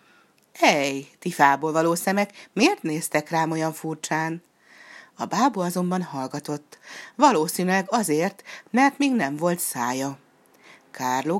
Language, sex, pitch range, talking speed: Hungarian, female, 145-215 Hz, 115 wpm